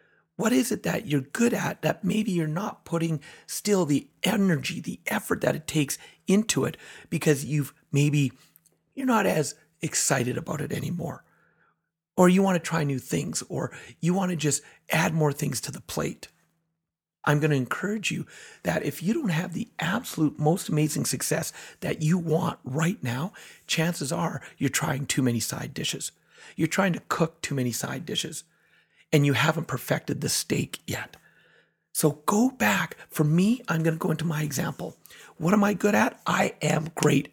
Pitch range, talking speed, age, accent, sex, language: 150-180 Hz, 180 wpm, 40-59, American, male, English